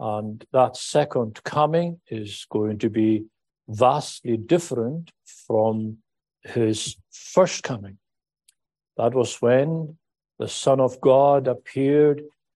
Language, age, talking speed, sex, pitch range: English, 60-79, 105 wpm, male, 110-150 Hz